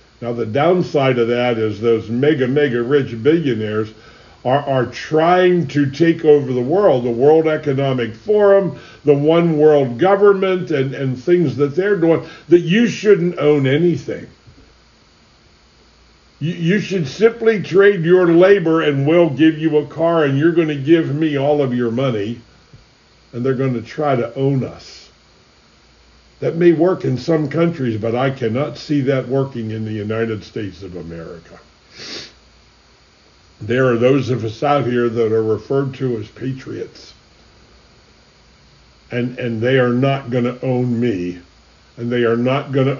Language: English